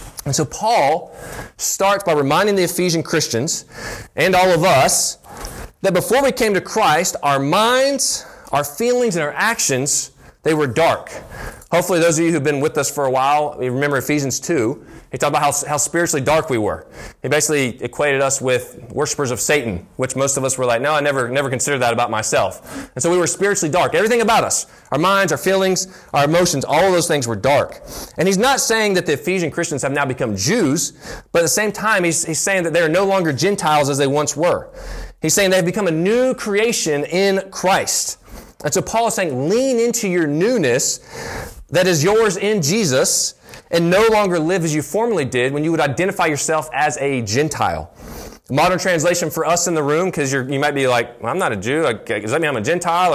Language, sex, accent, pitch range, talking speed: English, male, American, 145-190 Hz, 215 wpm